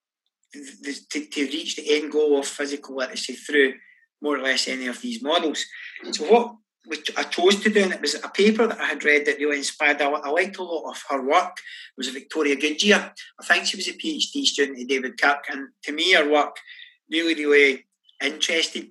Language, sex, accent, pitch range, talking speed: English, male, British, 135-195 Hz, 200 wpm